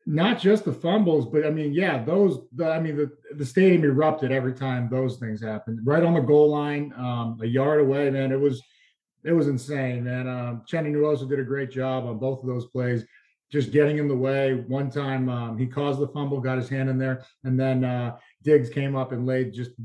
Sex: male